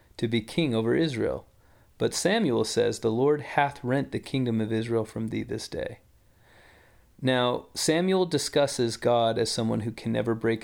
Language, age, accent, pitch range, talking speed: English, 30-49, American, 115-145 Hz, 170 wpm